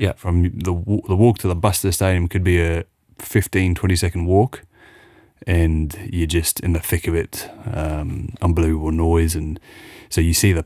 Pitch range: 80-95 Hz